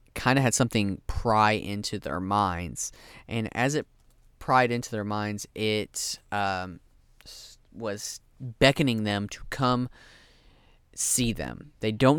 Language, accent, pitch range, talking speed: English, American, 105-130 Hz, 130 wpm